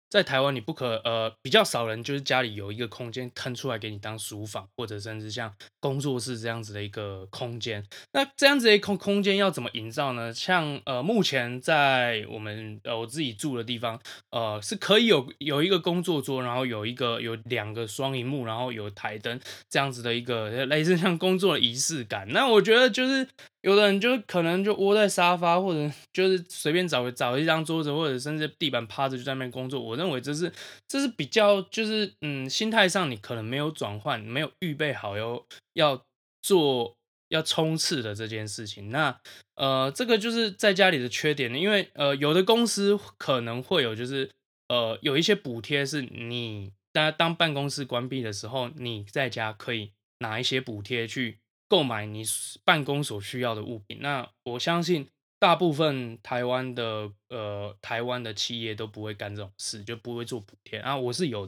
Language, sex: Chinese, male